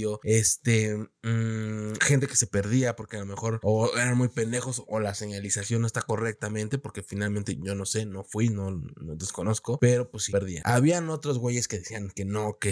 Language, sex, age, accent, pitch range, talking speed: Spanish, male, 20-39, Mexican, 105-125 Hz, 200 wpm